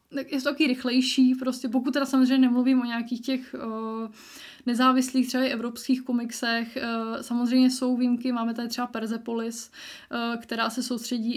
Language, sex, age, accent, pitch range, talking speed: Czech, female, 20-39, native, 230-255 Hz, 160 wpm